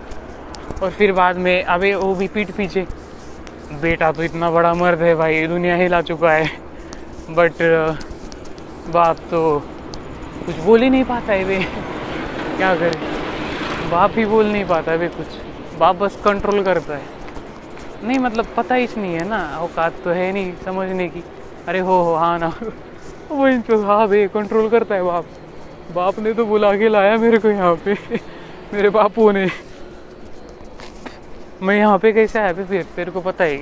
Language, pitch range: Marathi, 170-210 Hz